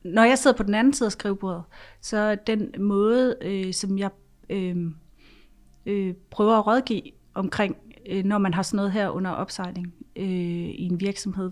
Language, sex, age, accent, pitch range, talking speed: Danish, female, 30-49, native, 185-220 Hz, 180 wpm